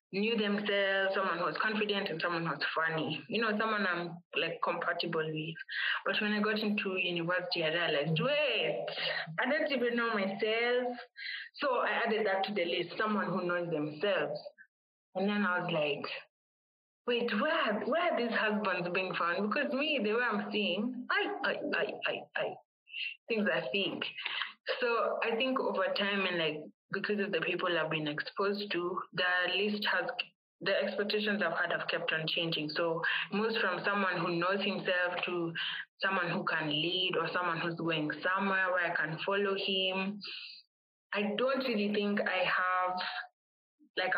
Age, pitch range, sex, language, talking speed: 20-39, 175-210 Hz, female, English, 170 wpm